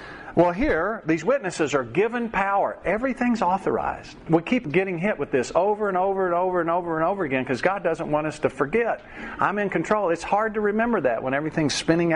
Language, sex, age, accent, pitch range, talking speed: English, male, 50-69, American, 135-190 Hz, 210 wpm